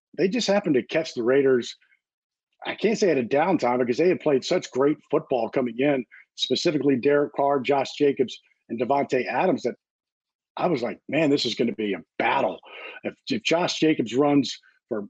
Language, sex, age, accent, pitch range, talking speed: English, male, 50-69, American, 125-155 Hz, 190 wpm